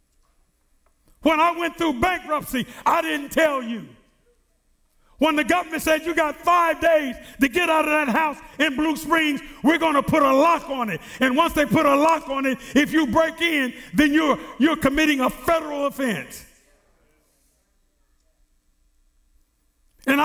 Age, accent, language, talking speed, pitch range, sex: 50-69, American, English, 160 wpm, 240-315 Hz, male